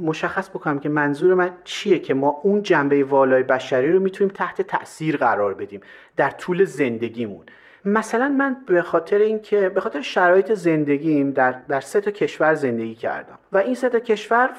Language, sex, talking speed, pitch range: Persian, male, 170 wpm, 150-225 Hz